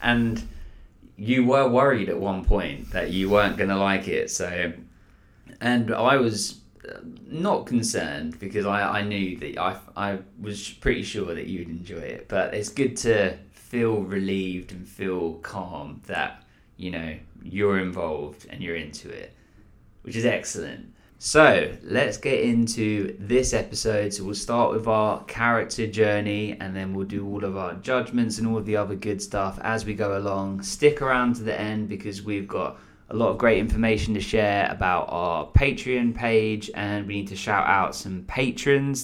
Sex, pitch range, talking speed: male, 100-120 Hz, 175 wpm